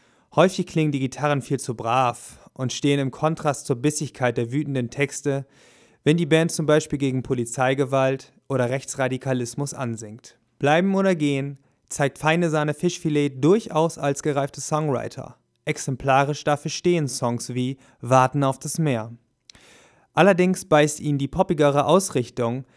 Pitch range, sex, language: 135-160 Hz, male, German